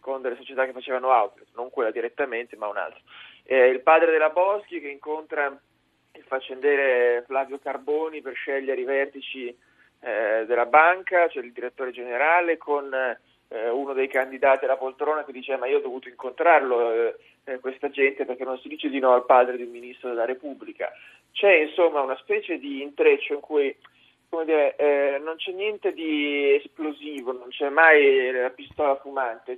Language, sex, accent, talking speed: Italian, male, native, 175 wpm